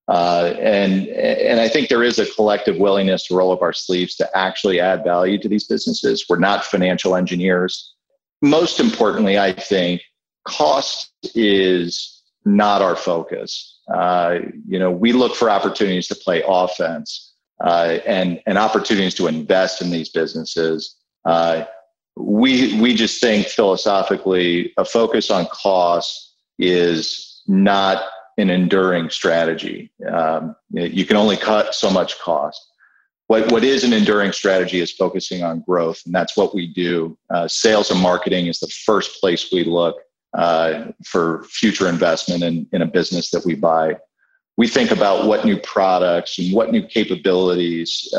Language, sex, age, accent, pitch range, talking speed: English, male, 40-59, American, 85-105 Hz, 155 wpm